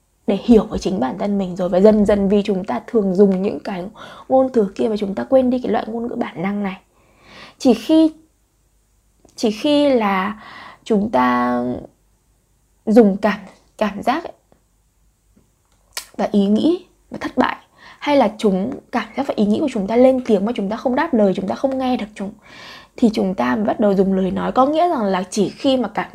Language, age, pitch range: Vietnamese, 20-39, 195-255 Hz